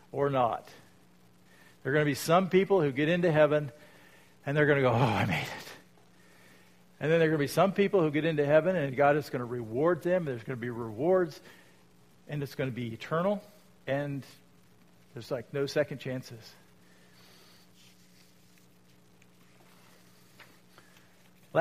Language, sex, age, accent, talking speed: English, male, 50-69, American, 165 wpm